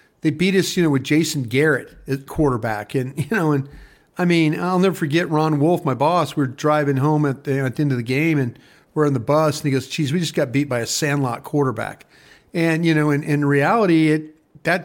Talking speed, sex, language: 240 wpm, male, English